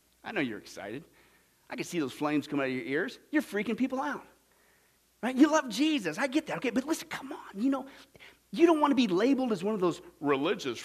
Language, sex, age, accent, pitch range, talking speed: English, male, 40-59, American, 190-315 Hz, 240 wpm